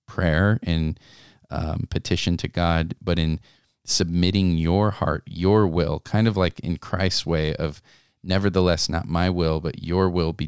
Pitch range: 85-100 Hz